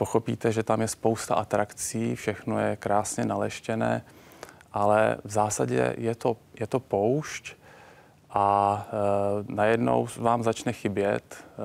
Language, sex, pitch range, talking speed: Czech, male, 105-115 Hz, 125 wpm